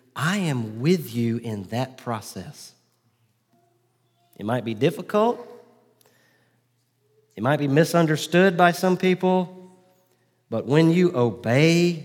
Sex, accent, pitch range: male, American, 110-145 Hz